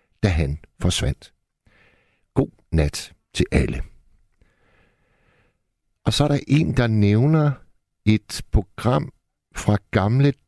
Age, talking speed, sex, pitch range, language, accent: 60-79, 105 wpm, male, 90-120 Hz, Danish, native